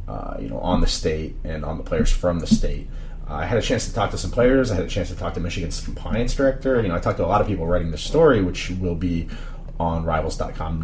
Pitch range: 85-105 Hz